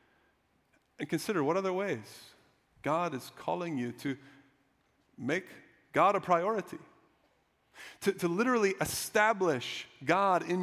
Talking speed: 115 wpm